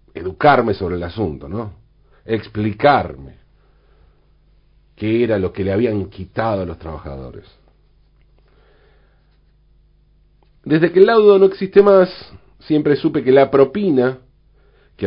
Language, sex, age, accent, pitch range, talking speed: Spanish, male, 40-59, Argentinian, 95-150 Hz, 115 wpm